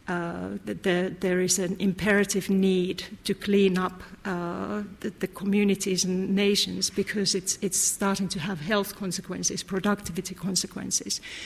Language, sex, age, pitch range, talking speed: English, female, 50-69, 180-205 Hz, 140 wpm